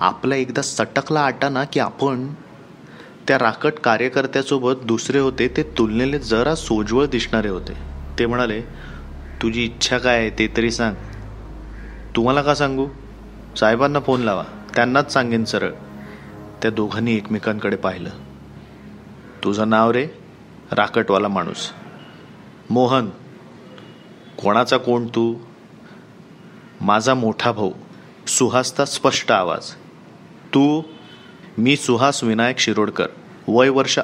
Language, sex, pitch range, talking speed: Marathi, male, 110-135 Hz, 110 wpm